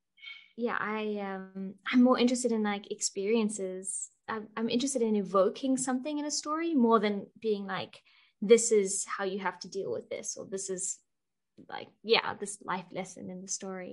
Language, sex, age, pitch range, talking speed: English, female, 20-39, 200-235 Hz, 180 wpm